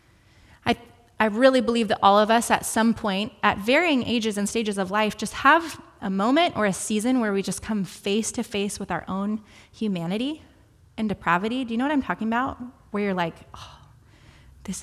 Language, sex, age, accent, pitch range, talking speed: English, female, 20-39, American, 185-235 Hz, 200 wpm